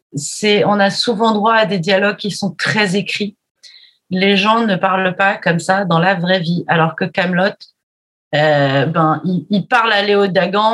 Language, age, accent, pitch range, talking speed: French, 30-49, French, 170-210 Hz, 185 wpm